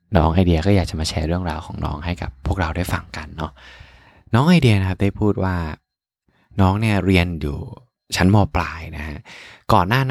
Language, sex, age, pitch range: Thai, male, 20-39, 85-105 Hz